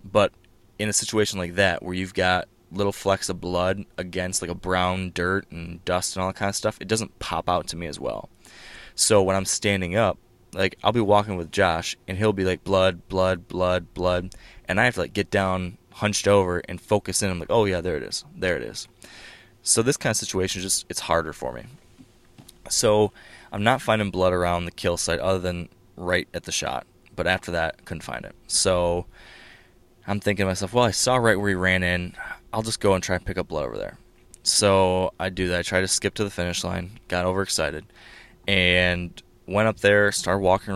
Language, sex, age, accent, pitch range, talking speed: English, male, 20-39, American, 90-100 Hz, 225 wpm